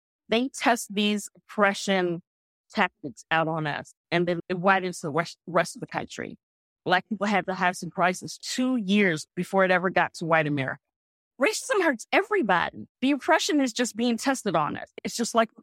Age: 40-59